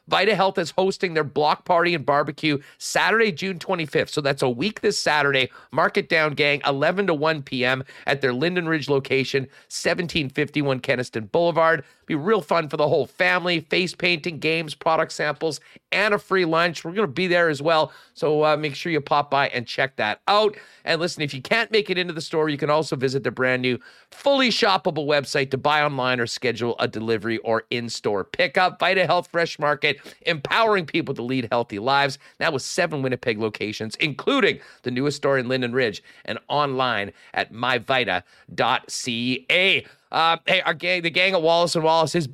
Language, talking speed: English, 190 wpm